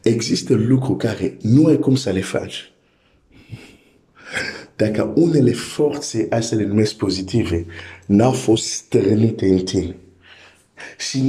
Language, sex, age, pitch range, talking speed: Romanian, male, 50-69, 95-130 Hz, 120 wpm